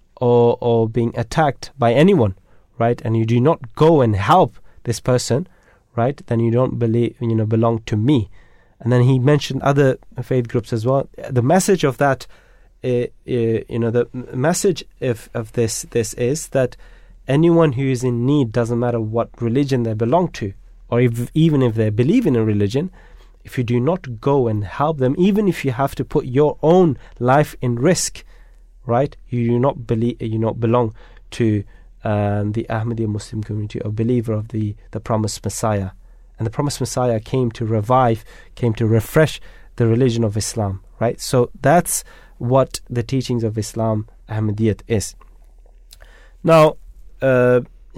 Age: 30-49